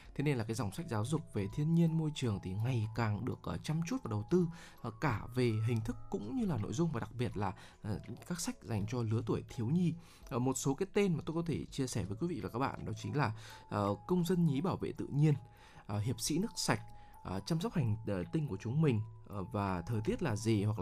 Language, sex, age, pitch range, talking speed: Vietnamese, male, 20-39, 110-155 Hz, 275 wpm